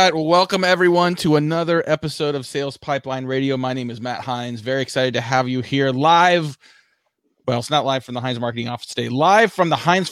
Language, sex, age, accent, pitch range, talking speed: English, male, 30-49, American, 120-150 Hz, 210 wpm